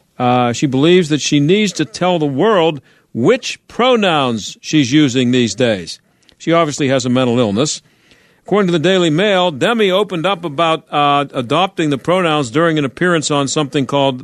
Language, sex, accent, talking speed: English, male, American, 175 wpm